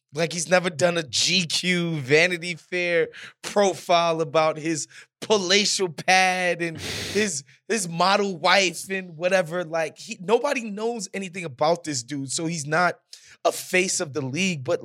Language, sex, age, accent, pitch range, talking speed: English, male, 20-39, American, 140-185 Hz, 150 wpm